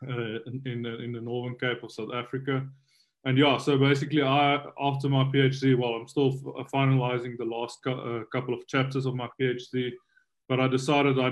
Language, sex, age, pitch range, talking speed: English, male, 20-39, 120-135 Hz, 180 wpm